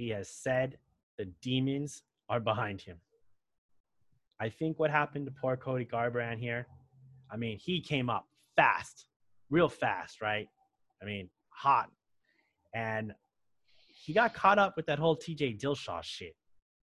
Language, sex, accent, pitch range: English, male, American, 110-140 Hz